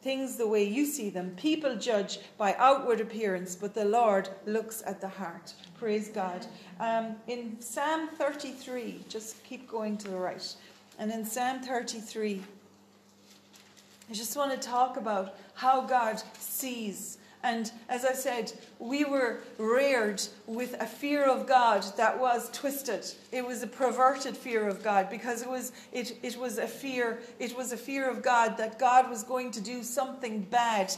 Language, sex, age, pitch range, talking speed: English, female, 40-59, 215-260 Hz, 170 wpm